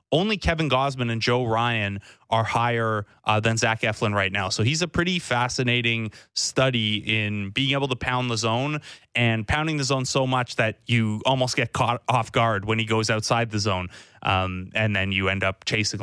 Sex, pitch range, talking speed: male, 110-135 Hz, 200 wpm